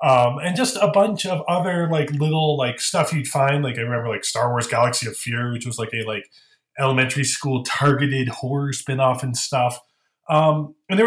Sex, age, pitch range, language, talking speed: male, 20-39, 125-170 Hz, English, 200 wpm